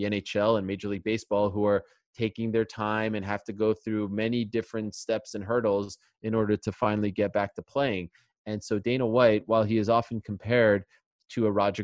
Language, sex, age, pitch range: English, male, 20-39, 100-120 Hz